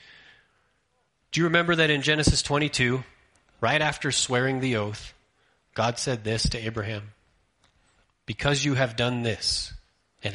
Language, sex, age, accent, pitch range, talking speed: English, male, 30-49, American, 110-140 Hz, 135 wpm